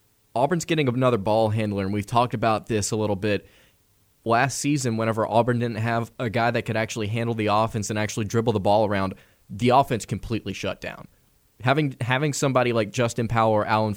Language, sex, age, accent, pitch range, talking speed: English, male, 20-39, American, 110-125 Hz, 200 wpm